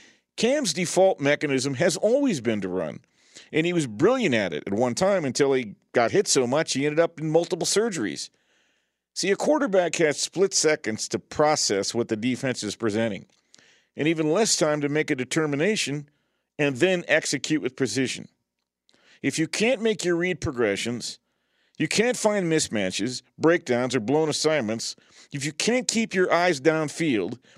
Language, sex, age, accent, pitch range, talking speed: English, male, 50-69, American, 120-170 Hz, 170 wpm